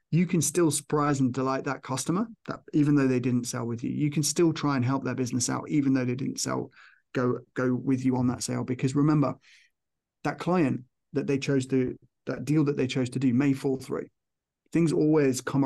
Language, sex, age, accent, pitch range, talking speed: English, male, 30-49, British, 130-155 Hz, 220 wpm